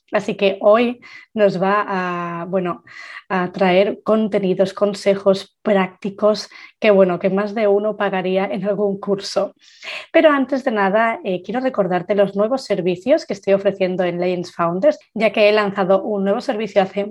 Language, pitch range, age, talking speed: Spanish, 185-215 Hz, 20-39, 155 wpm